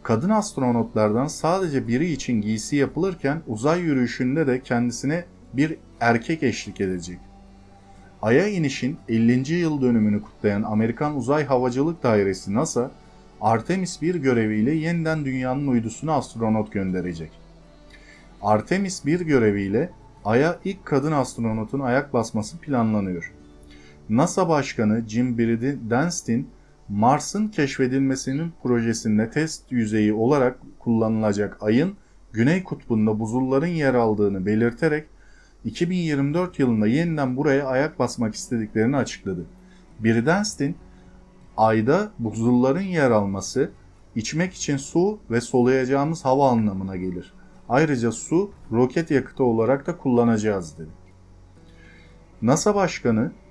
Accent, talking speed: native, 105 wpm